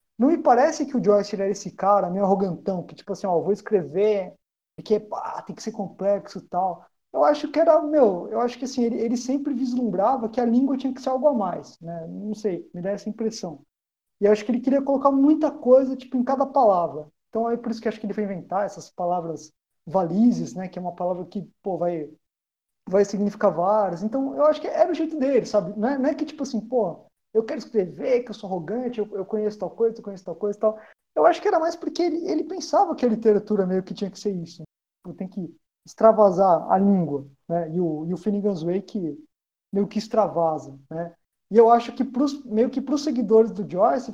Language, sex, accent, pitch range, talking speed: Portuguese, male, Brazilian, 185-255 Hz, 235 wpm